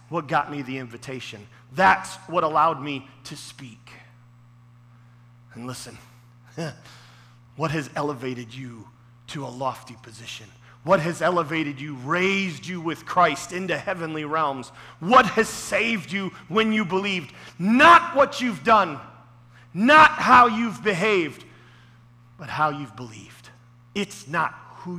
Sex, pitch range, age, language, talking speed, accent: male, 120-175 Hz, 40-59, English, 130 wpm, American